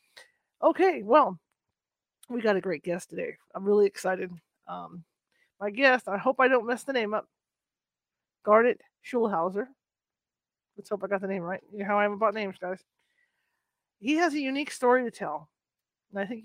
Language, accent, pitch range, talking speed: English, American, 195-245 Hz, 180 wpm